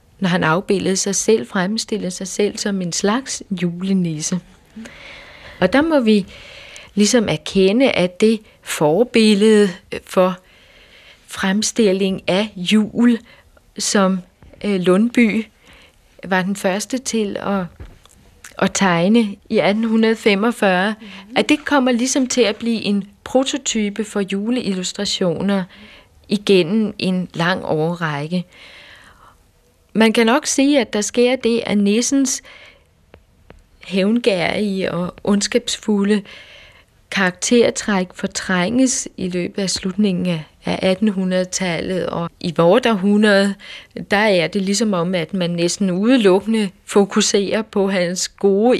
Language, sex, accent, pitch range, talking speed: Danish, female, native, 185-220 Hz, 110 wpm